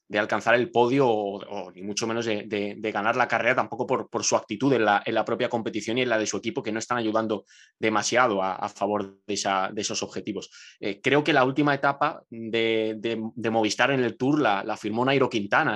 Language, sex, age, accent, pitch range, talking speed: Spanish, male, 20-39, Spanish, 110-125 Hz, 225 wpm